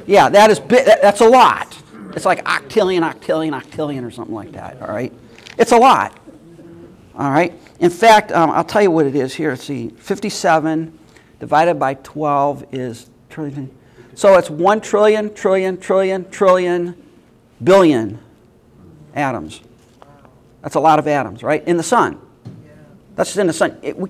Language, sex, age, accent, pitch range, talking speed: English, male, 40-59, American, 130-175 Hz, 155 wpm